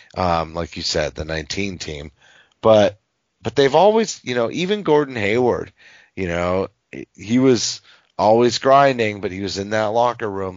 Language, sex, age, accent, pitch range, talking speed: English, male, 30-49, American, 90-120 Hz, 165 wpm